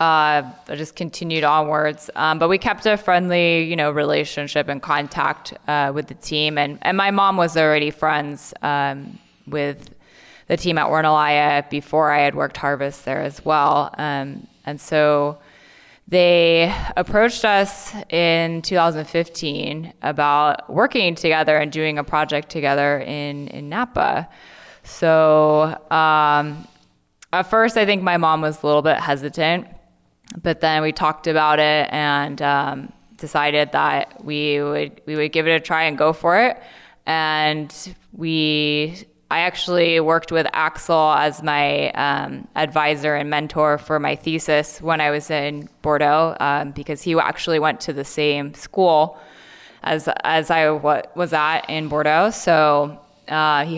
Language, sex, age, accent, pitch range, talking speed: English, female, 20-39, American, 150-165 Hz, 150 wpm